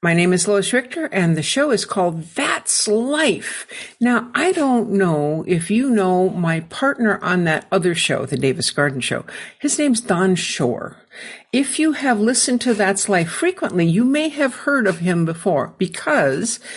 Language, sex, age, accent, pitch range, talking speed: English, female, 60-79, American, 175-240 Hz, 175 wpm